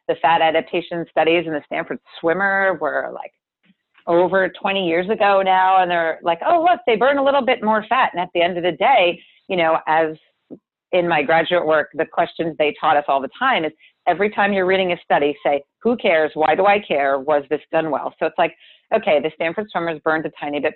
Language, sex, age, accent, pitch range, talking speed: English, female, 40-59, American, 160-215 Hz, 225 wpm